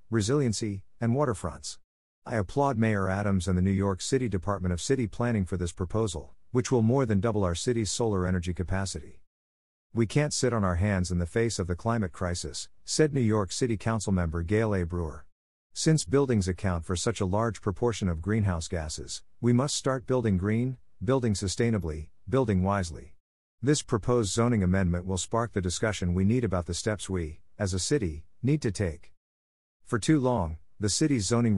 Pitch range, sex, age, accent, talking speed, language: 90-115 Hz, male, 50-69, American, 185 wpm, English